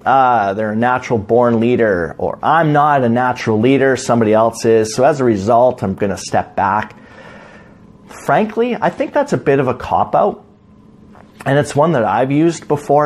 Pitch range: 120-180 Hz